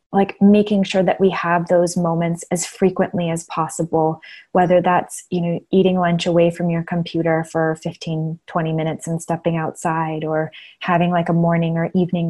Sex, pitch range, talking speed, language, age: female, 165-185 Hz, 175 wpm, English, 20-39